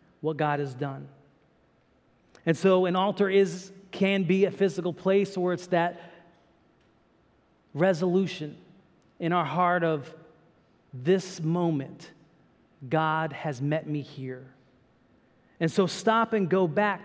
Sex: male